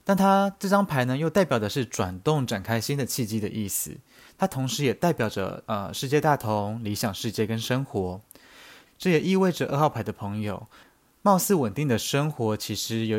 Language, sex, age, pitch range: Chinese, male, 20-39, 110-150 Hz